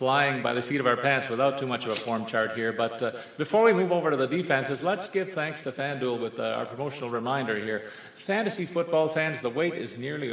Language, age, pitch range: English, 40-59, 120-165 Hz